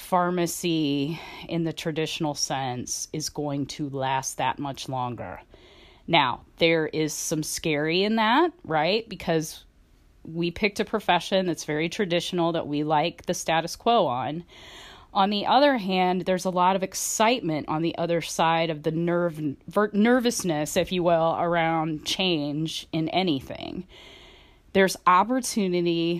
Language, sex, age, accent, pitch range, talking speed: English, female, 30-49, American, 160-220 Hz, 140 wpm